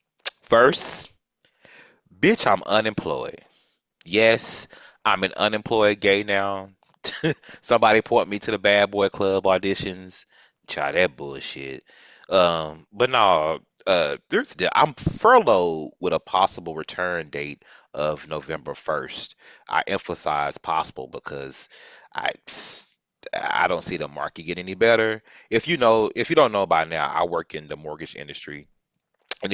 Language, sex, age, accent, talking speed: English, male, 30-49, American, 135 wpm